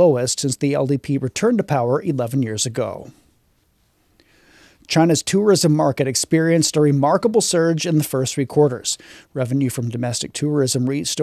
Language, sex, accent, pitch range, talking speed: English, male, American, 130-165 Hz, 145 wpm